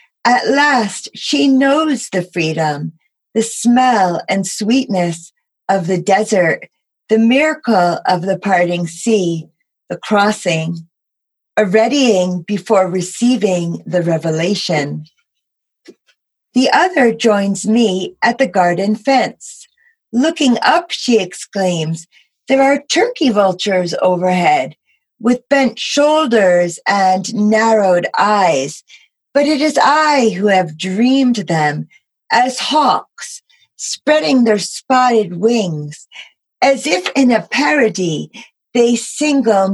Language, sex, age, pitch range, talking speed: English, female, 40-59, 180-265 Hz, 105 wpm